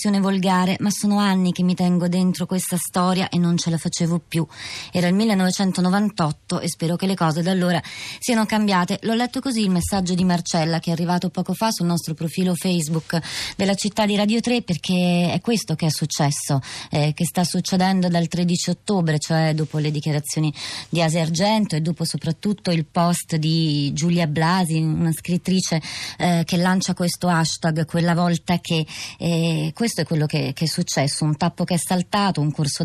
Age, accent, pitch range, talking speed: 20-39, native, 160-185 Hz, 185 wpm